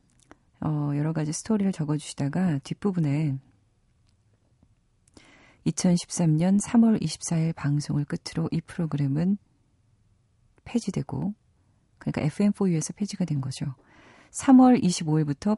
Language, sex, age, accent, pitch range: Korean, female, 40-59, native, 140-180 Hz